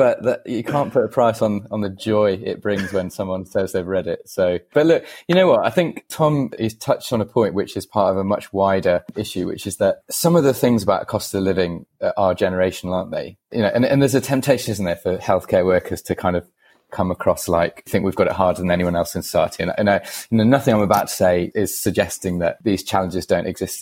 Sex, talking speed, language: male, 255 wpm, English